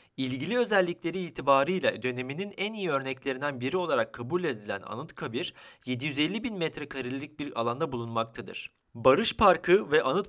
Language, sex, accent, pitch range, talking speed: Turkish, male, native, 120-165 Hz, 130 wpm